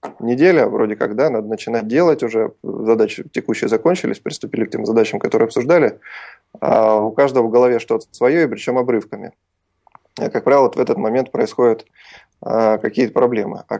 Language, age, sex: Russian, 20-39, male